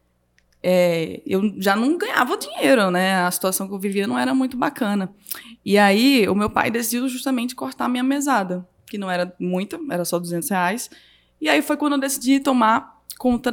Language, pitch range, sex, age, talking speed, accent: Portuguese, 205-265 Hz, female, 20-39, 185 wpm, Brazilian